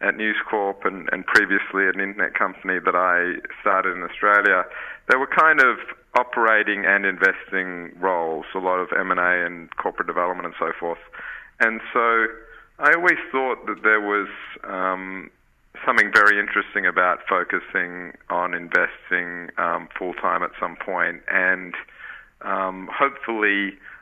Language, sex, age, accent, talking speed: English, male, 40-59, Australian, 140 wpm